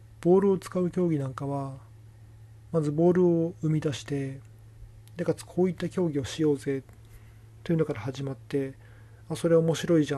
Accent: native